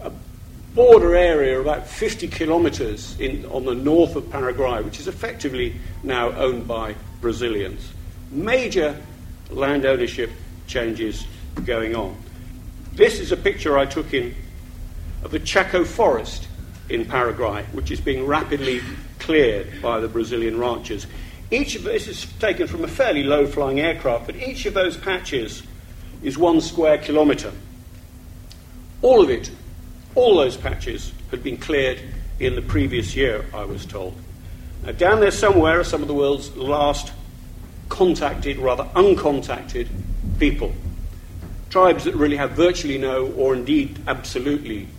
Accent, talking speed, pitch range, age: British, 135 wpm, 90-150 Hz, 50-69